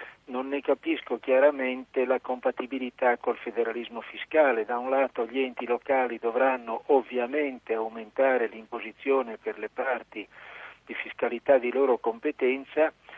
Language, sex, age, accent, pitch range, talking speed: Italian, male, 50-69, native, 120-140 Hz, 125 wpm